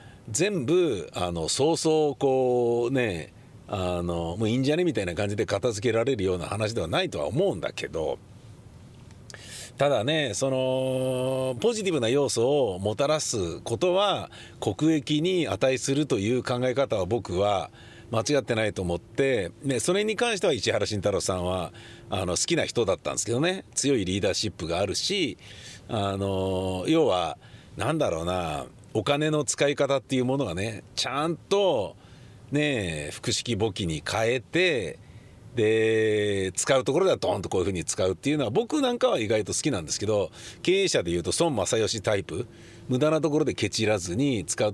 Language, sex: Japanese, male